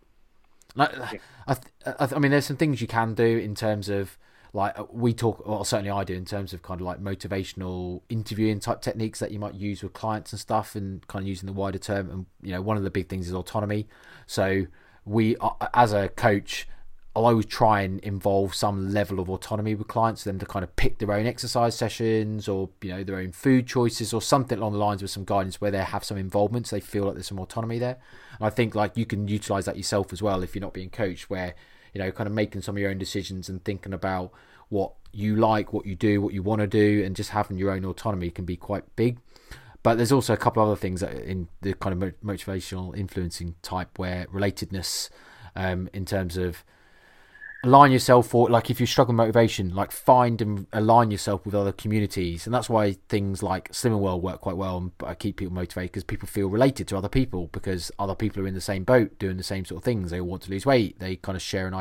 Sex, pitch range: male, 95-110 Hz